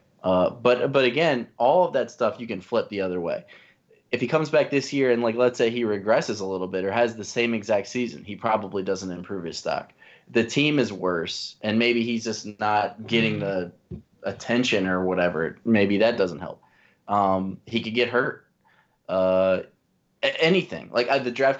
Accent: American